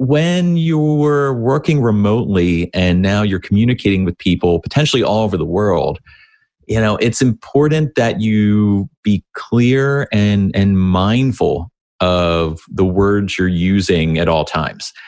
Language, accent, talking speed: English, American, 135 wpm